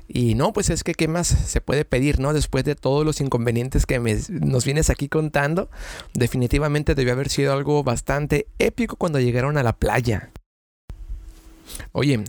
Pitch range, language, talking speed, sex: 125-150 Hz, Spanish, 165 wpm, male